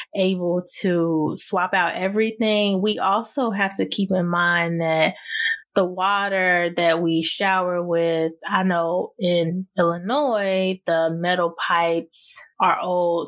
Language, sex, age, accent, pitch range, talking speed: English, female, 20-39, American, 165-195 Hz, 125 wpm